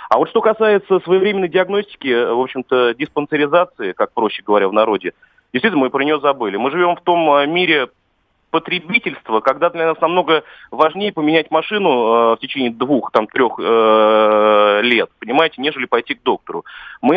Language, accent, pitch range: Russian, native, 145-185 Hz